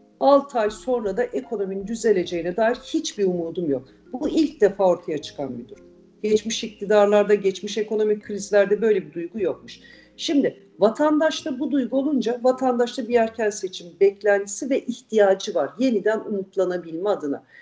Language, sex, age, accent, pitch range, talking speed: Turkish, female, 50-69, native, 200-275 Hz, 145 wpm